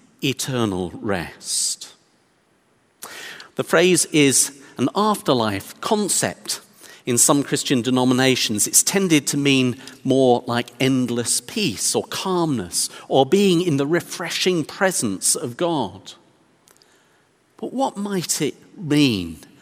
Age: 50-69